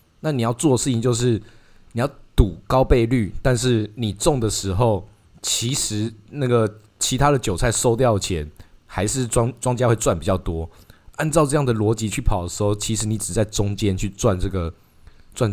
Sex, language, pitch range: male, Chinese, 95-125 Hz